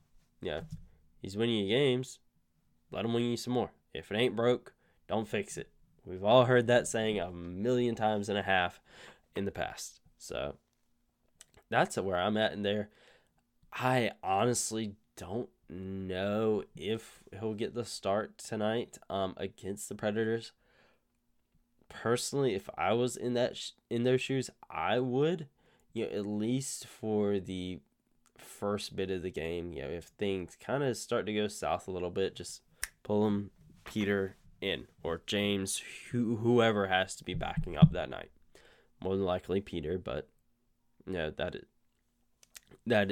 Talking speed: 160 wpm